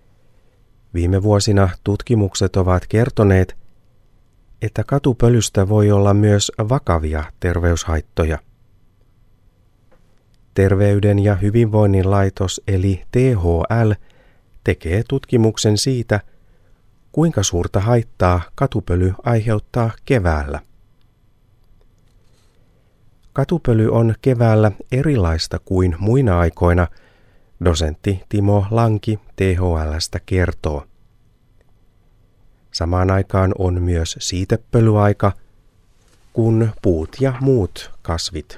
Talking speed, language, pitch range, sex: 75 wpm, Finnish, 90-115 Hz, male